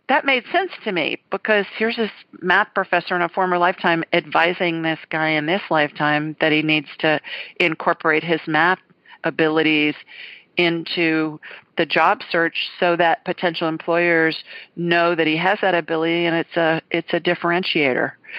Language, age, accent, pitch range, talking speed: English, 40-59, American, 160-190 Hz, 155 wpm